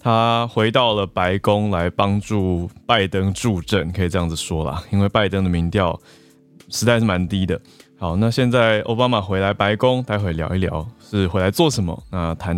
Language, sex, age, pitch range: Chinese, male, 20-39, 90-115 Hz